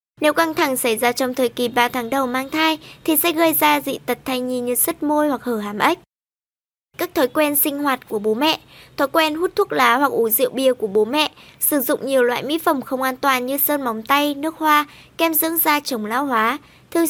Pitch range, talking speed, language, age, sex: 245-310 Hz, 245 wpm, Vietnamese, 20-39, male